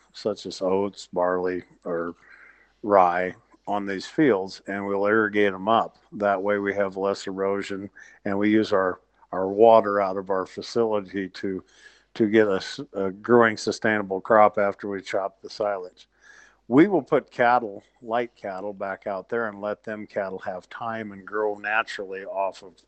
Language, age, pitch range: English, 50-69, 100-115 Hz